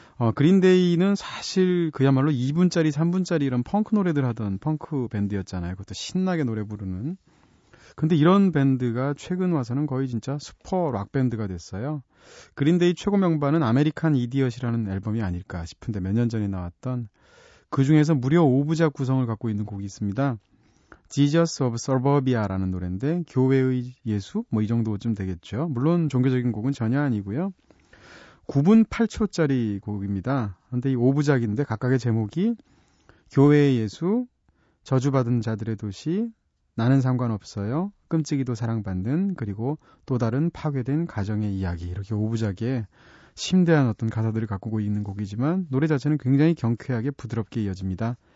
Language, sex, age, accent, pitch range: Korean, male, 30-49, native, 110-155 Hz